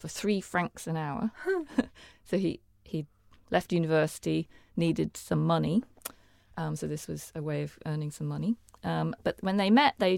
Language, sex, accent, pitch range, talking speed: English, female, British, 145-205 Hz, 170 wpm